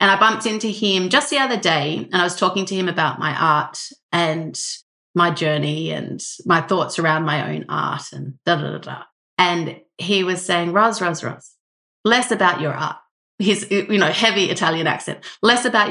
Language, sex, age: English, female, 30-49